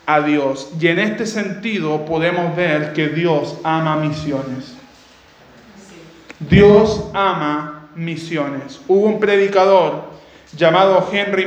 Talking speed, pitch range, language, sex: 100 wpm, 165-200 Hz, Spanish, male